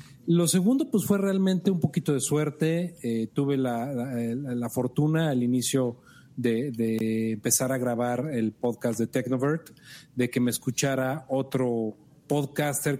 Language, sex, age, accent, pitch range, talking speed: Spanish, male, 40-59, Mexican, 125-165 Hz, 150 wpm